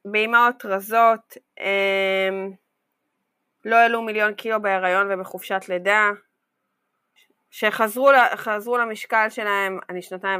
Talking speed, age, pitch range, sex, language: 85 wpm, 20-39, 180-215 Hz, female, Hebrew